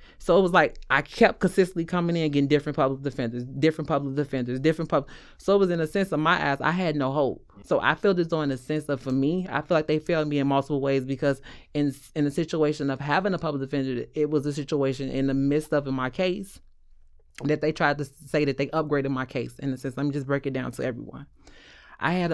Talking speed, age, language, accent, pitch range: 250 wpm, 30-49, English, American, 135-160 Hz